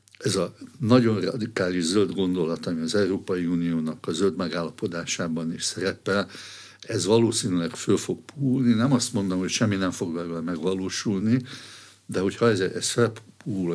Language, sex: Hungarian, male